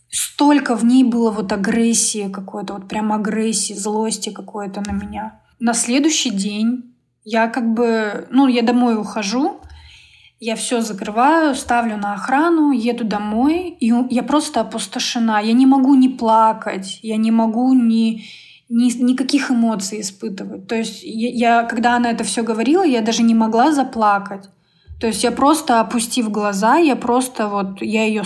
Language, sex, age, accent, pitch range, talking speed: Russian, female, 20-39, native, 210-245 Hz, 155 wpm